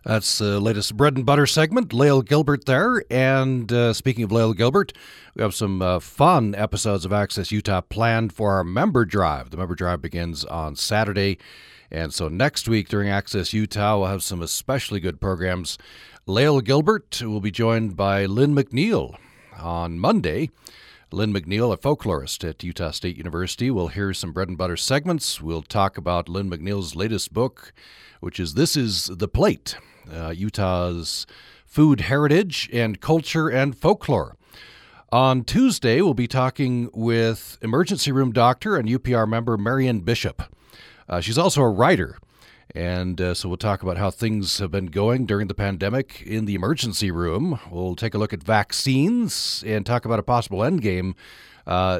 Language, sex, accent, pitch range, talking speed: English, male, American, 95-125 Hz, 165 wpm